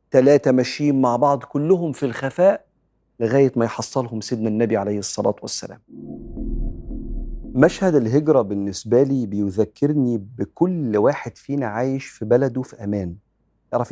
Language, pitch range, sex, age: Arabic, 110-140 Hz, male, 40-59